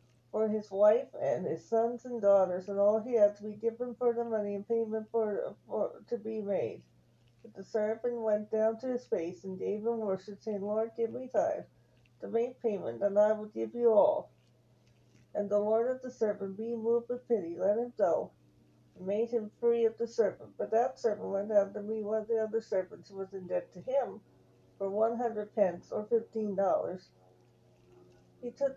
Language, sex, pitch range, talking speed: English, female, 185-235 Hz, 205 wpm